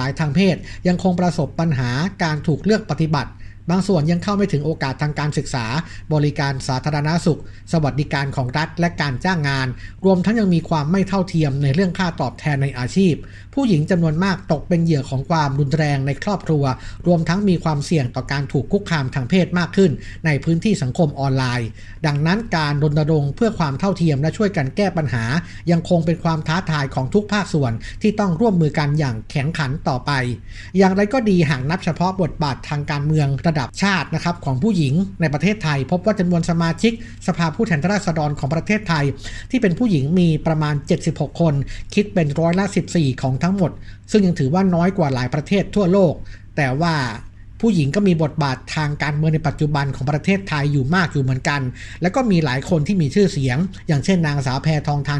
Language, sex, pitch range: Thai, male, 140-180 Hz